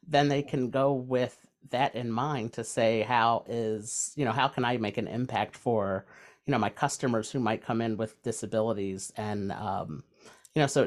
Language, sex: English, male